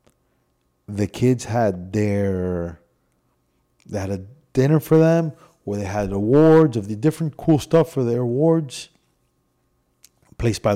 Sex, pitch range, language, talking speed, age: male, 105-145 Hz, English, 140 wpm, 30-49